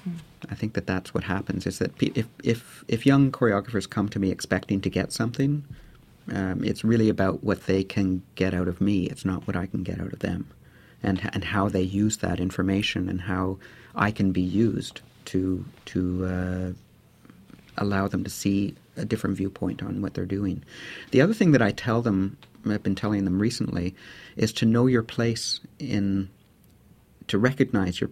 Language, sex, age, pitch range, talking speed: English, male, 50-69, 95-115 Hz, 190 wpm